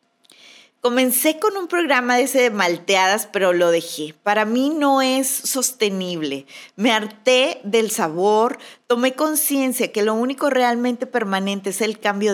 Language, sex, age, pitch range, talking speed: Spanish, female, 30-49, 185-255 Hz, 145 wpm